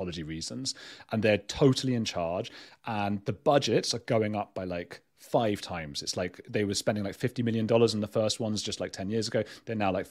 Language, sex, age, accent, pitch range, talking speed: English, male, 30-49, British, 100-130 Hz, 220 wpm